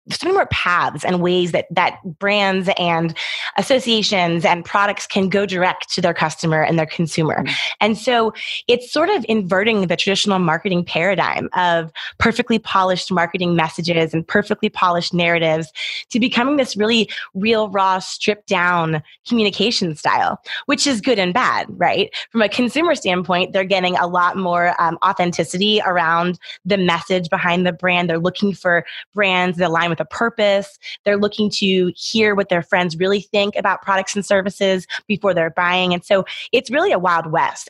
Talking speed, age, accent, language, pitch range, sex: 165 wpm, 20-39, American, English, 175-210 Hz, female